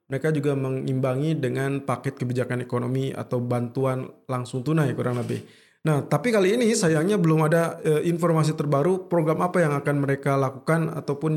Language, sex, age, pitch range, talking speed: Indonesian, male, 20-39, 140-165 Hz, 160 wpm